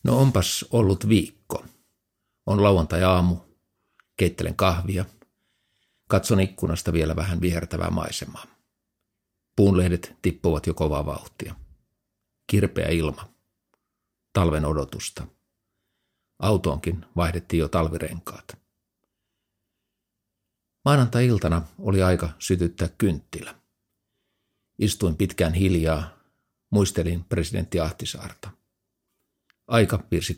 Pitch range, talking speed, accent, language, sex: 85-100 Hz, 80 wpm, native, Finnish, male